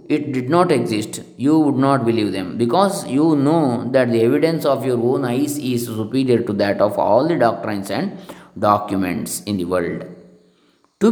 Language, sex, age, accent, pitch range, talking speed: English, male, 20-39, Indian, 115-160 Hz, 180 wpm